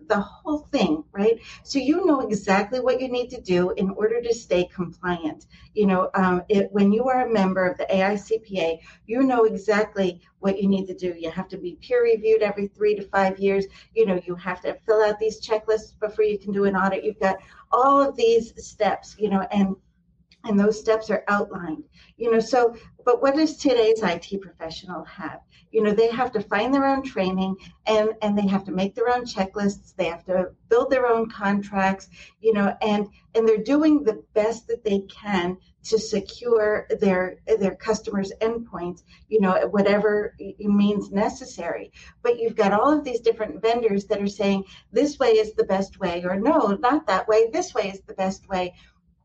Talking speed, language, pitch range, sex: 200 wpm, English, 190-230 Hz, female